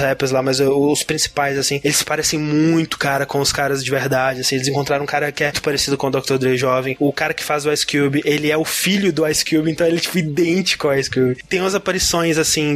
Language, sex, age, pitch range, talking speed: Portuguese, male, 20-39, 140-165 Hz, 255 wpm